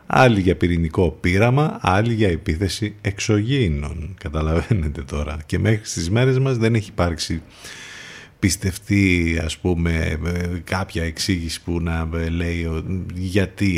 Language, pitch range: Greek, 85-125 Hz